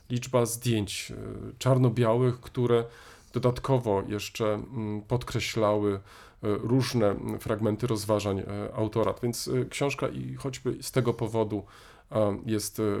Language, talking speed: Polish, 90 wpm